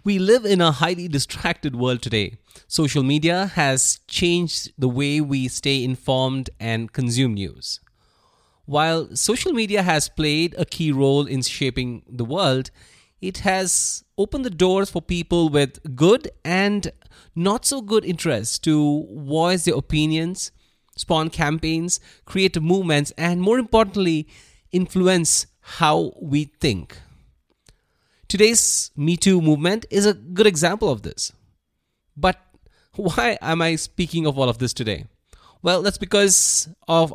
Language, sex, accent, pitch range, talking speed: English, male, Indian, 130-180 Hz, 135 wpm